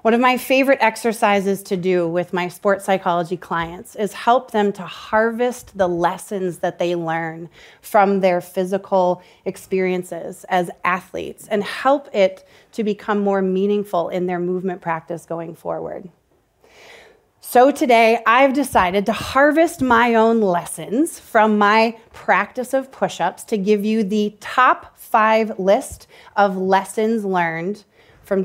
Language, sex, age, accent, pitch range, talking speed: English, female, 30-49, American, 185-230 Hz, 140 wpm